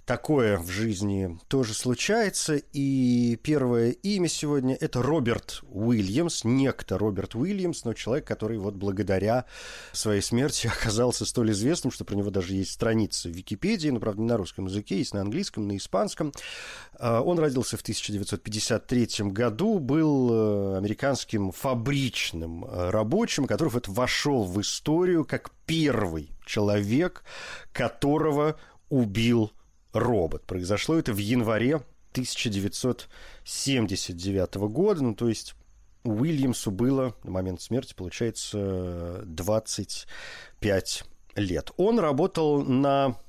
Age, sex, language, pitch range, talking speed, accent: 40-59, male, Russian, 105-140 Hz, 115 wpm, native